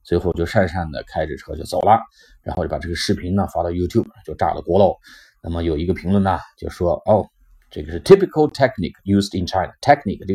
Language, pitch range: Chinese, 95-130 Hz